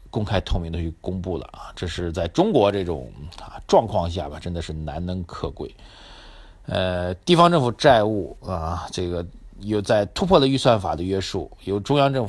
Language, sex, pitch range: Chinese, male, 85-105 Hz